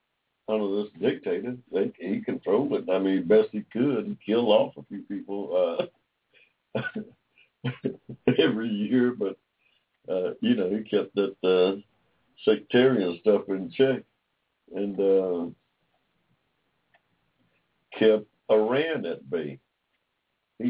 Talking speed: 115 wpm